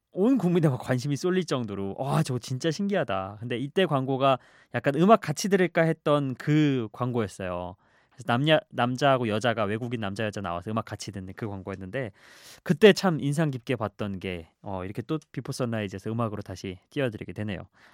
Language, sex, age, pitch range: Korean, male, 20-39, 110-170 Hz